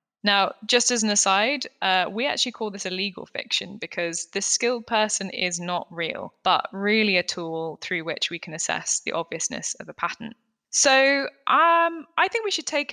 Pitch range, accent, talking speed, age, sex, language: 185-230 Hz, British, 190 wpm, 20-39, female, English